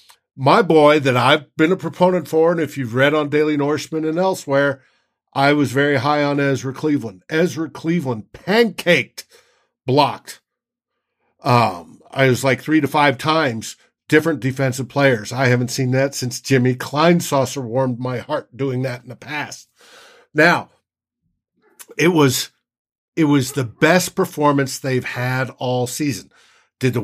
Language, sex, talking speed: English, male, 155 wpm